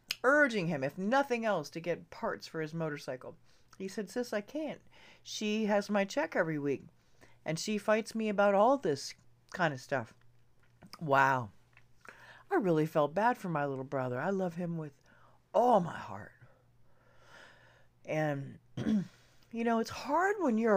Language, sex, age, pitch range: English, female, 40-59, 140-215 Hz